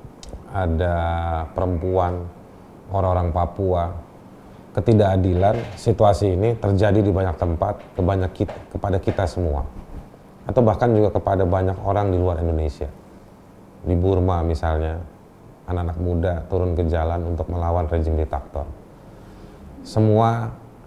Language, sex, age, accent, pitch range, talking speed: Indonesian, male, 30-49, native, 85-100 Hz, 110 wpm